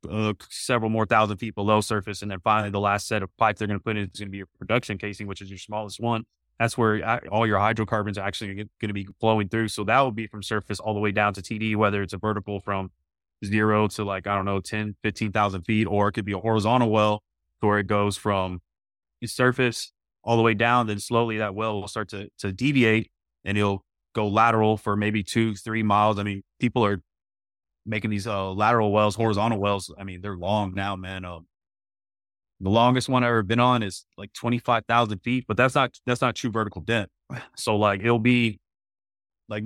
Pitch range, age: 100-115 Hz, 20-39